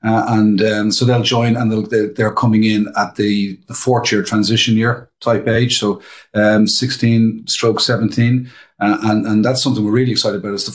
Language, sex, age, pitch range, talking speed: English, male, 40-59, 100-115 Hz, 195 wpm